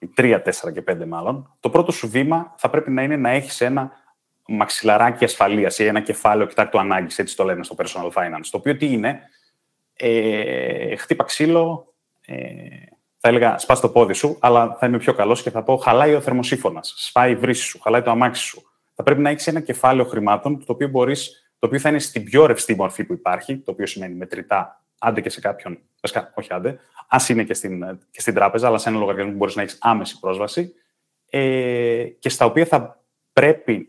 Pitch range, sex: 110-145 Hz, male